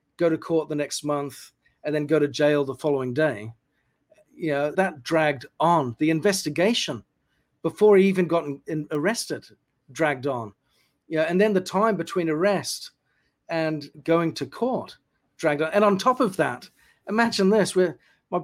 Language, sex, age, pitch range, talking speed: English, male, 40-59, 145-190 Hz, 175 wpm